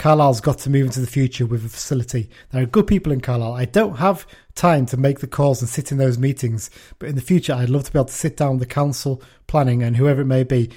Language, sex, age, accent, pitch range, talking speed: English, male, 30-49, British, 130-170 Hz, 280 wpm